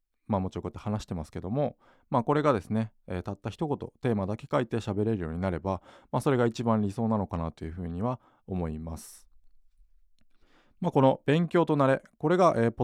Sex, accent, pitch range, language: male, native, 90-125 Hz, Japanese